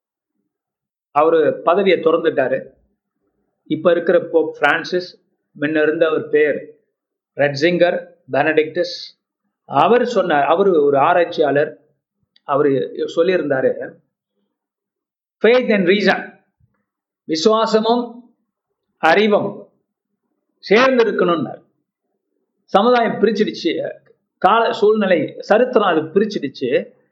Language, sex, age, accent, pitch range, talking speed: Tamil, male, 50-69, native, 175-255 Hz, 45 wpm